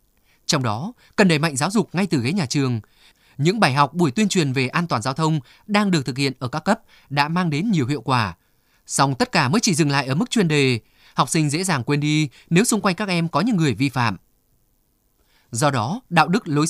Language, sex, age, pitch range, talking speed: Vietnamese, male, 20-39, 140-190 Hz, 245 wpm